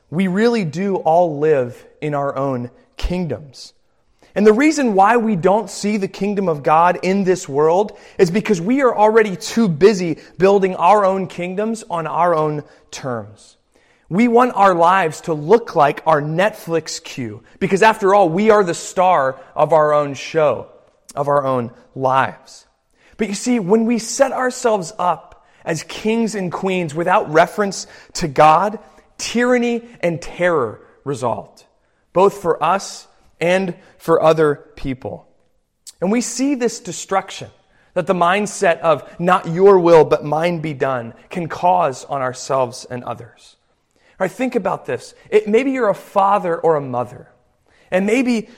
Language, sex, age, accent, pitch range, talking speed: English, male, 30-49, American, 155-215 Hz, 155 wpm